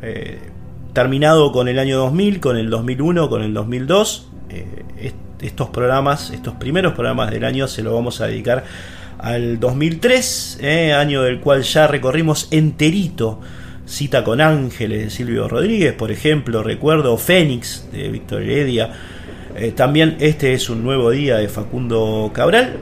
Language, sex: Spanish, male